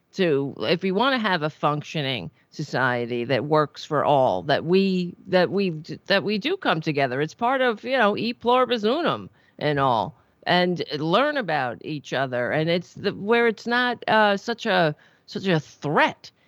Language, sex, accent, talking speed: English, female, American, 175 wpm